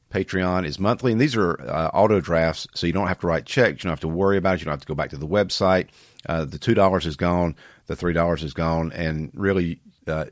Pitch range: 85-105 Hz